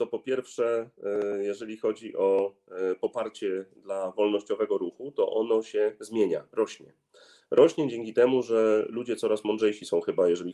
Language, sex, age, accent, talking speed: Polish, male, 30-49, native, 140 wpm